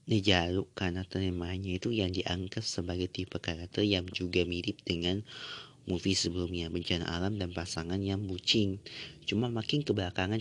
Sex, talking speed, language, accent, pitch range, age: male, 140 wpm, Indonesian, native, 90-105 Hz, 30-49